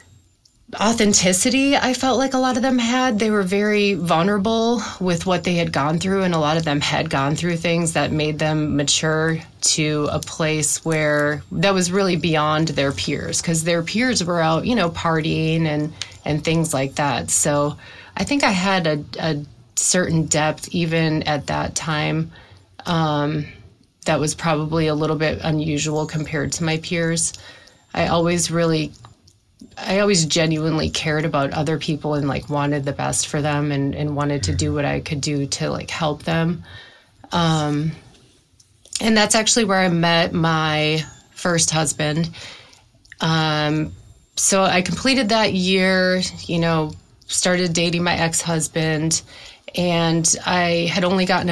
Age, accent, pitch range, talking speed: 30-49, American, 150-180 Hz, 160 wpm